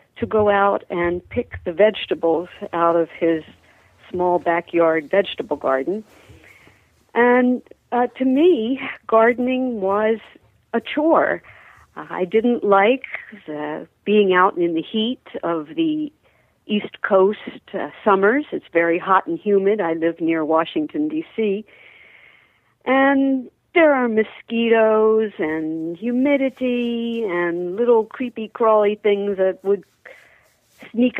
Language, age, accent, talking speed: English, 50-69, American, 115 wpm